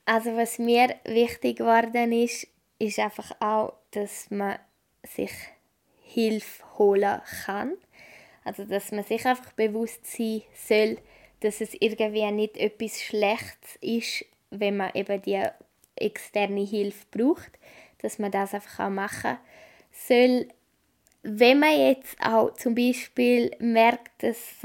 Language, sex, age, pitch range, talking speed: German, female, 20-39, 215-245 Hz, 125 wpm